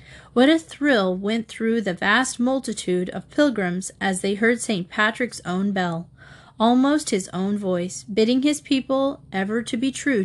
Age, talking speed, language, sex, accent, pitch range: 30-49, 165 wpm, English, female, American, 185-255 Hz